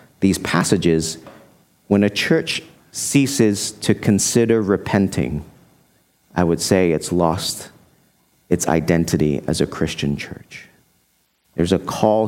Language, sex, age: English, male, 40-59